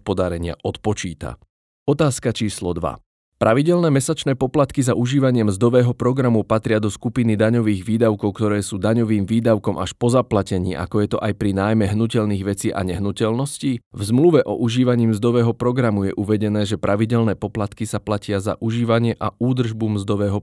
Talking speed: 155 wpm